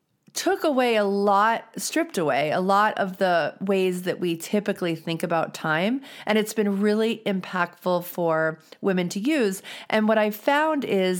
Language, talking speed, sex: English, 165 wpm, female